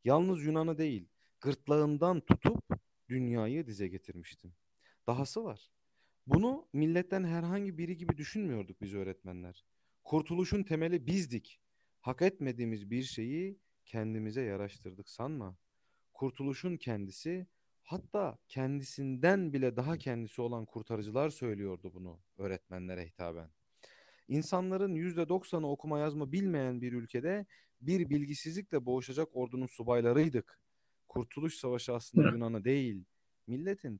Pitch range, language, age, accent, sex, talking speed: 100-160 Hz, Turkish, 40-59, native, male, 105 wpm